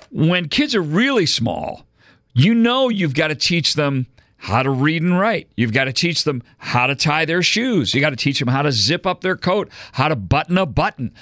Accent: American